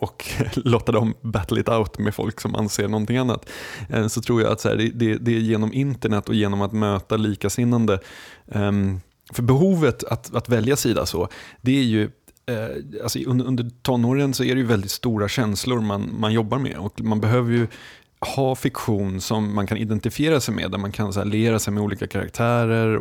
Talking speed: 180 wpm